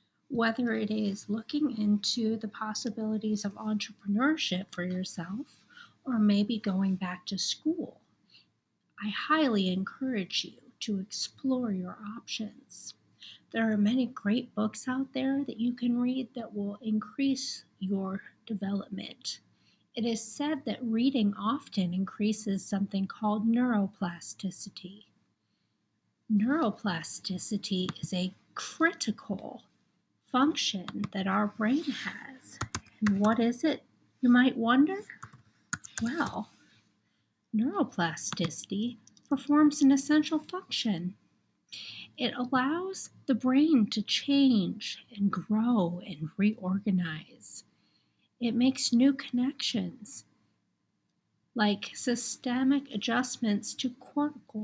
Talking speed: 100 wpm